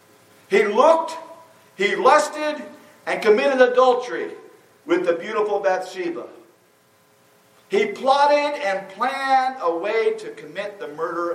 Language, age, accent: English, 50-69, American